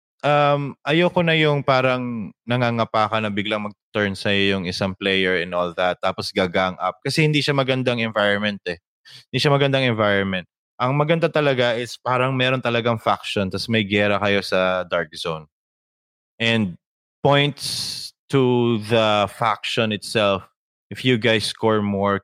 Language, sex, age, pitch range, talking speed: English, male, 20-39, 95-120 Hz, 150 wpm